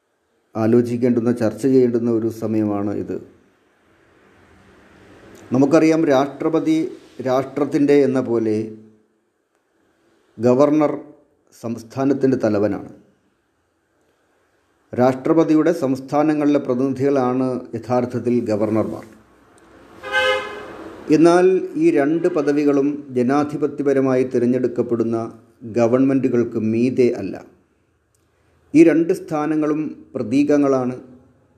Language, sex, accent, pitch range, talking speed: Malayalam, male, native, 115-145 Hz, 60 wpm